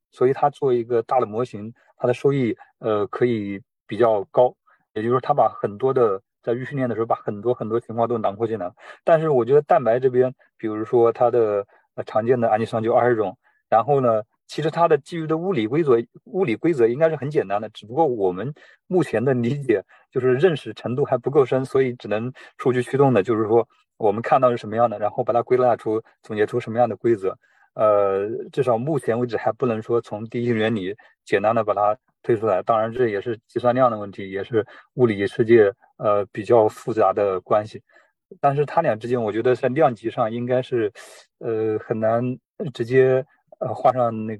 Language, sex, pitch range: Chinese, male, 110-130 Hz